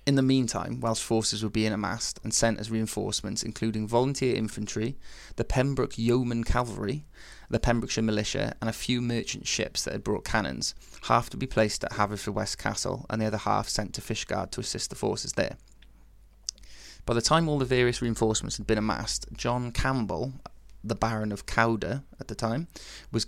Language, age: English, 20-39